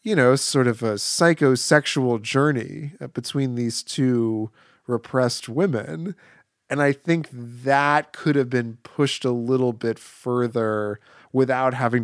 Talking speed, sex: 130 wpm, male